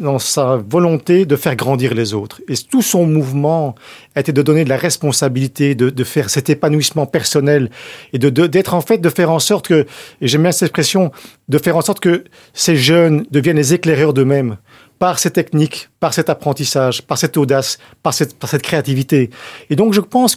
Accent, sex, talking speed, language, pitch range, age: French, male, 205 wpm, French, 135-175 Hz, 40-59